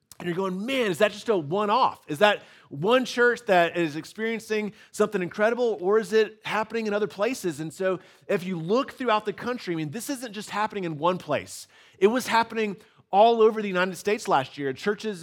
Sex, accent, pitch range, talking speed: male, American, 175-225 Hz, 215 wpm